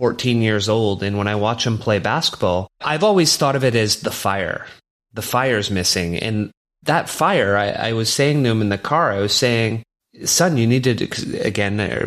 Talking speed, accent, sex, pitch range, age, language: 205 wpm, American, male, 100-130 Hz, 30-49, English